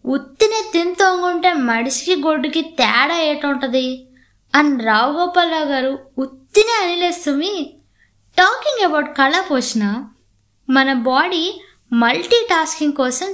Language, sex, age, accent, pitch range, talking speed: Telugu, female, 20-39, native, 255-345 Hz, 95 wpm